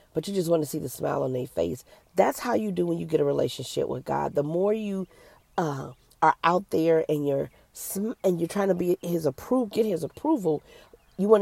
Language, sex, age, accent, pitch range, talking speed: English, female, 40-59, American, 145-180 Hz, 230 wpm